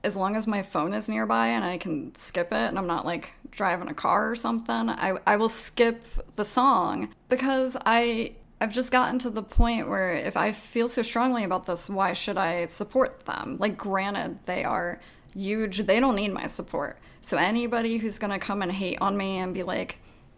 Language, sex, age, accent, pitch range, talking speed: English, female, 20-39, American, 185-230 Hz, 210 wpm